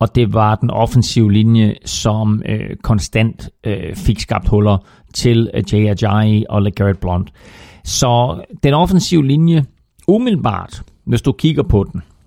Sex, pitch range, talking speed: male, 105-130 Hz, 125 wpm